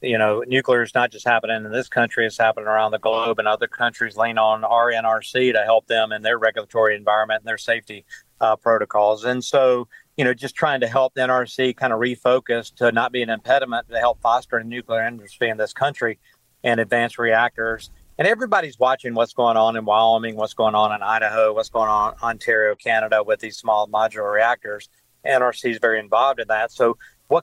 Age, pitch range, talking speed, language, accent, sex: 50-69, 110-130 Hz, 210 wpm, English, American, male